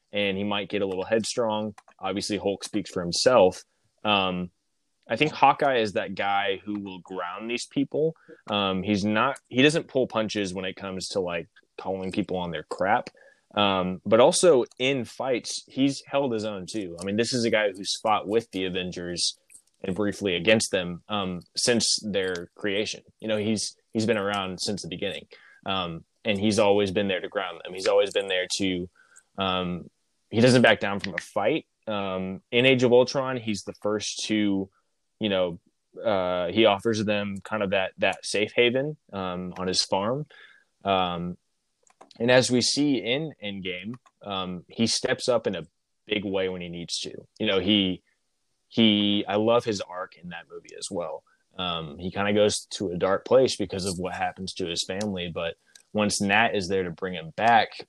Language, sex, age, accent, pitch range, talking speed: English, male, 20-39, American, 95-110 Hz, 190 wpm